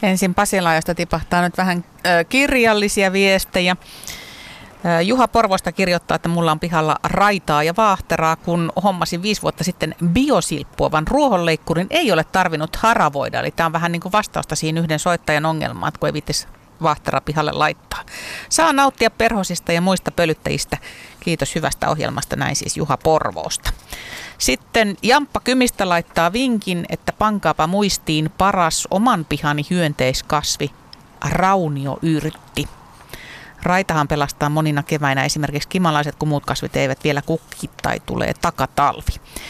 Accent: native